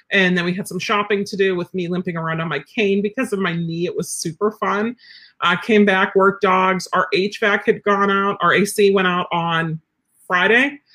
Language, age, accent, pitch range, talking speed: English, 40-59, American, 175-215 Hz, 215 wpm